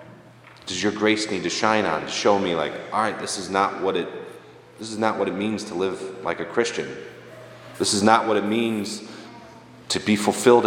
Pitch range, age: 95-115 Hz, 30-49